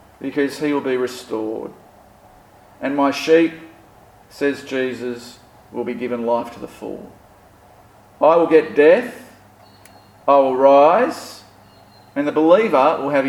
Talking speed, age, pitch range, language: 130 wpm, 40-59, 105-150 Hz, English